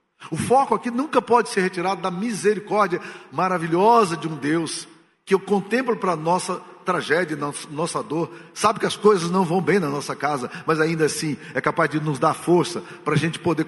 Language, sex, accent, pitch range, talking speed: Portuguese, male, Brazilian, 145-185 Hz, 195 wpm